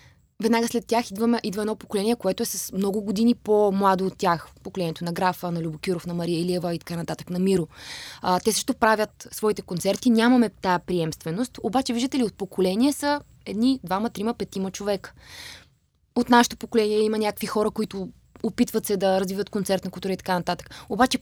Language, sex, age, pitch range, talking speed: Bulgarian, female, 20-39, 190-235 Hz, 180 wpm